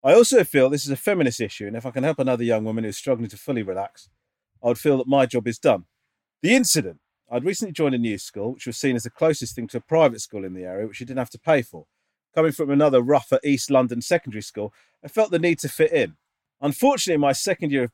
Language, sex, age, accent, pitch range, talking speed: English, male, 40-59, British, 120-160 Hz, 265 wpm